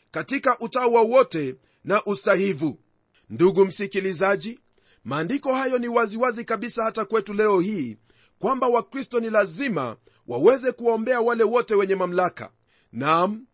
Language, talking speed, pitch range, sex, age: Swahili, 125 wpm, 200-260 Hz, male, 40-59